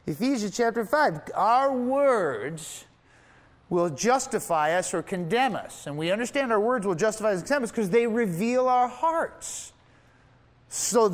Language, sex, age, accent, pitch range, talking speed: English, male, 30-49, American, 180-240 Hz, 150 wpm